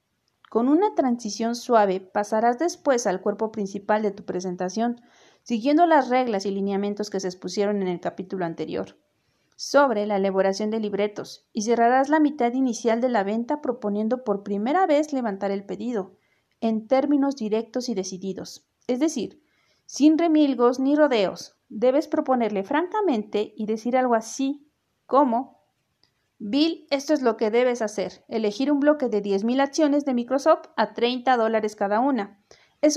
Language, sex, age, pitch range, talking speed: Spanish, female, 40-59, 205-270 Hz, 155 wpm